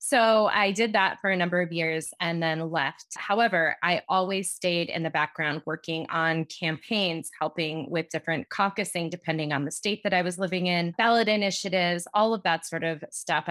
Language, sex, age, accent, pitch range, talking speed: English, female, 20-39, American, 165-205 Hz, 190 wpm